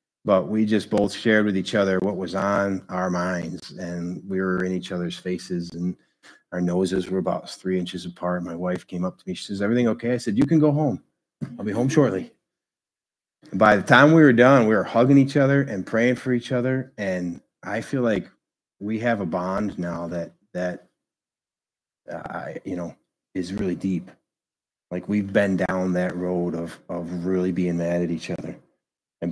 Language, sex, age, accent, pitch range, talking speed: English, male, 30-49, American, 85-100 Hz, 205 wpm